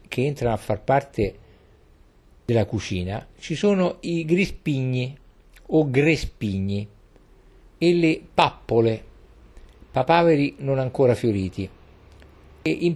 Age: 50-69